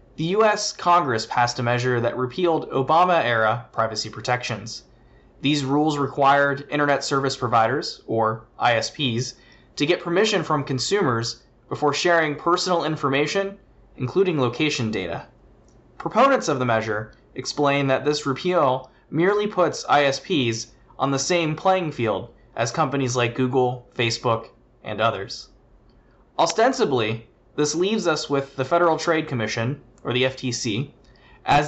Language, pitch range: English, 125-160 Hz